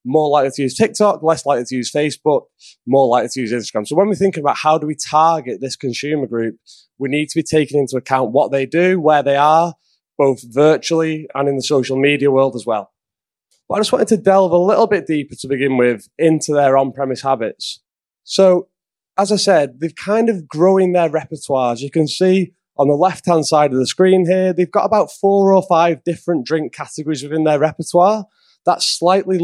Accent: British